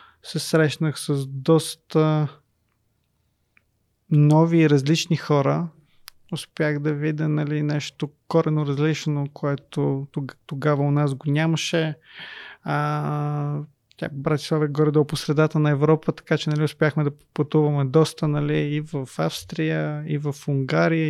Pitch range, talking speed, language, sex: 140-160 Hz, 115 wpm, Bulgarian, male